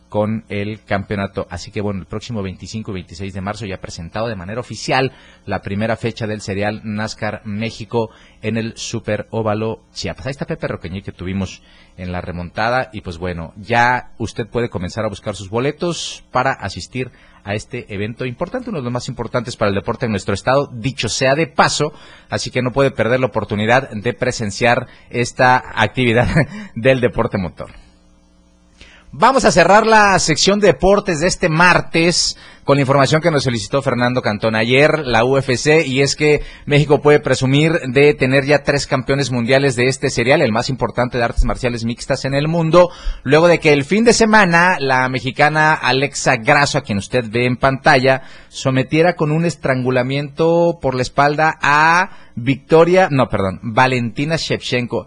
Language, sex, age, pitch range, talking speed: Spanish, male, 30-49, 105-140 Hz, 175 wpm